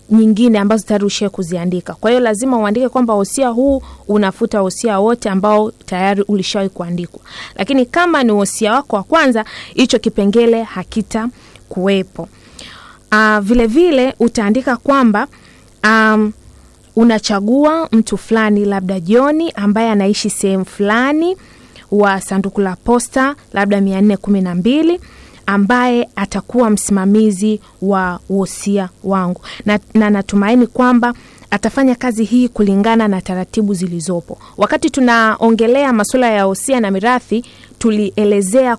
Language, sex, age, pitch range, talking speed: Swahili, female, 20-39, 200-250 Hz, 115 wpm